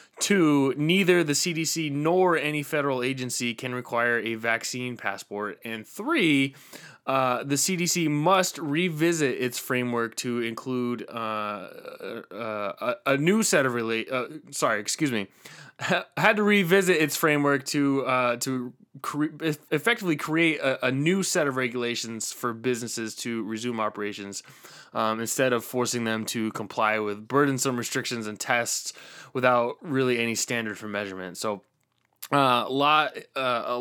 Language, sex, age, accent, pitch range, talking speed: English, male, 20-39, American, 115-150 Hz, 130 wpm